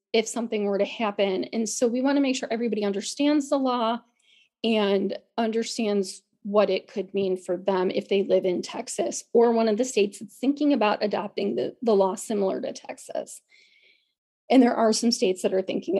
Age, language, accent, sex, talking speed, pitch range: 30-49, English, American, female, 195 wpm, 215-260 Hz